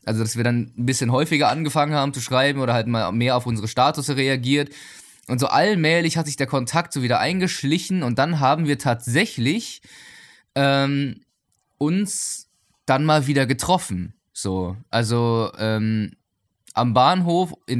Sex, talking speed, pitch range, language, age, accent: male, 155 wpm, 115-155 Hz, German, 20-39, German